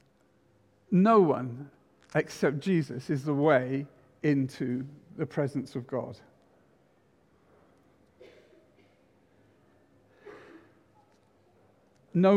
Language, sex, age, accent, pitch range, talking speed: English, male, 50-69, British, 140-190 Hz, 65 wpm